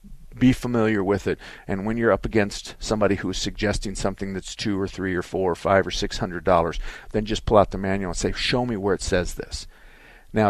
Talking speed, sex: 230 wpm, male